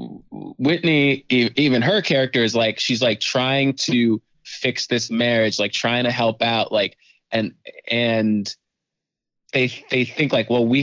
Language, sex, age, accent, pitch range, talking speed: English, male, 20-39, American, 105-125 Hz, 150 wpm